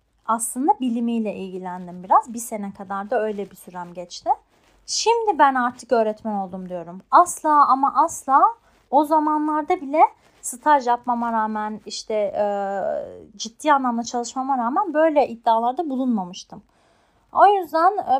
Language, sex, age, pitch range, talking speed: Turkish, female, 30-49, 215-310 Hz, 130 wpm